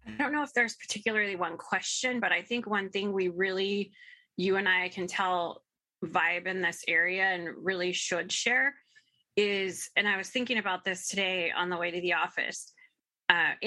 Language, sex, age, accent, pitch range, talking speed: English, female, 20-39, American, 180-210 Hz, 190 wpm